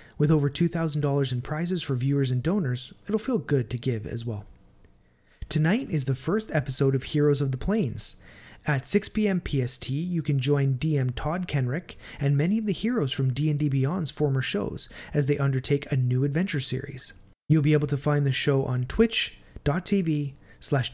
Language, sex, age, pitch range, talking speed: English, male, 20-39, 125-155 Hz, 185 wpm